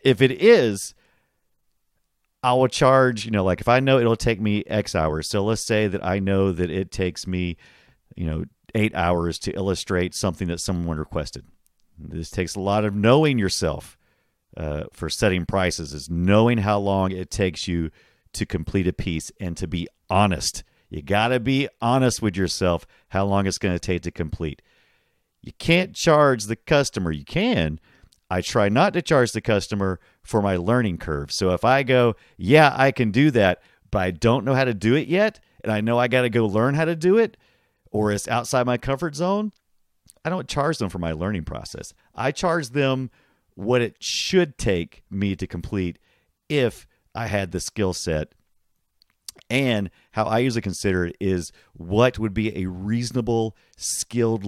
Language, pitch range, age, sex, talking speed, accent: English, 90-120 Hz, 40-59, male, 185 wpm, American